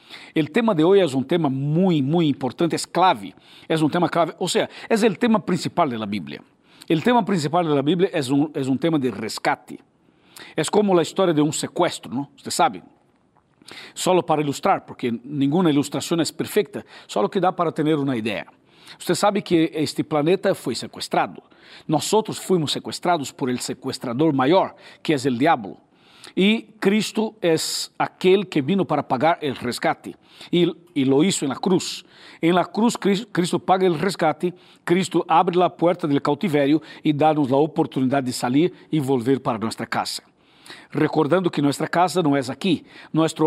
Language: Spanish